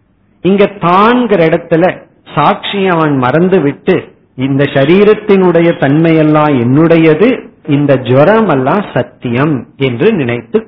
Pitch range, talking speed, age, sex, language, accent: 140-195 Hz, 95 wpm, 50-69, male, Tamil, native